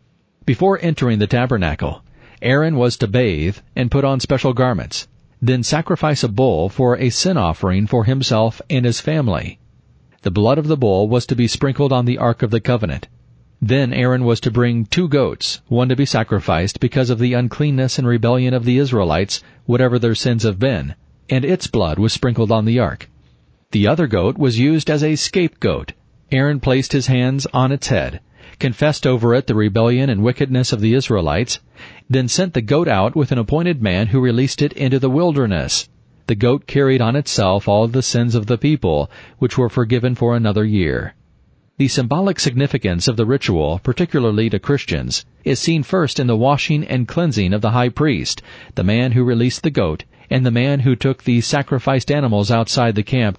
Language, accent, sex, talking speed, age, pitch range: English, American, male, 190 wpm, 40-59, 110-135 Hz